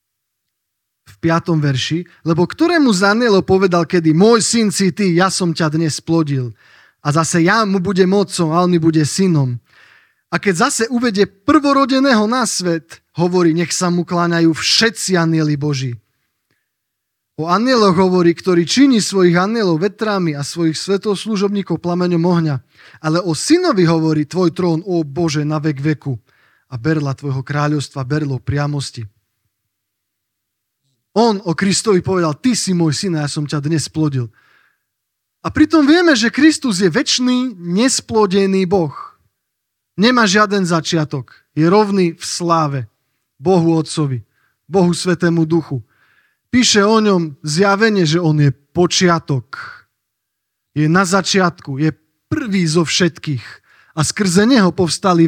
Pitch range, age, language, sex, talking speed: 150-195 Hz, 20-39, Slovak, male, 140 wpm